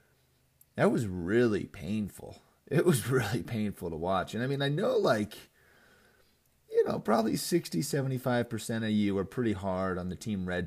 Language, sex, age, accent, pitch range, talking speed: English, male, 30-49, American, 90-135 Hz, 165 wpm